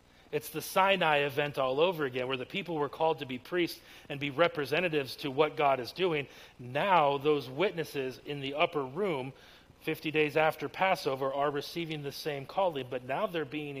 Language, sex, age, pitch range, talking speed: English, male, 40-59, 130-160 Hz, 185 wpm